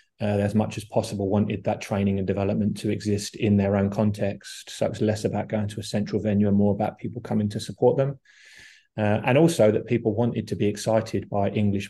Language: English